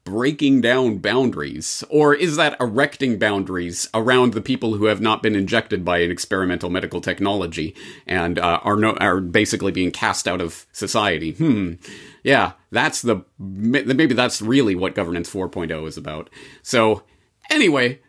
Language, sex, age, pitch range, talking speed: English, male, 40-59, 95-130 Hz, 155 wpm